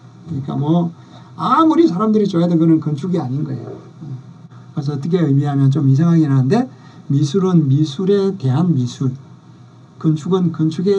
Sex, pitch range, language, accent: male, 140-180 Hz, Korean, native